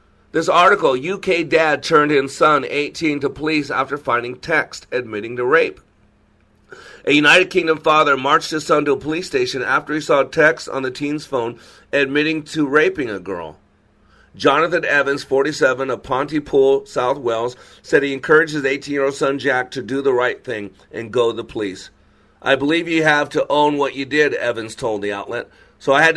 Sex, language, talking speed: male, English, 185 wpm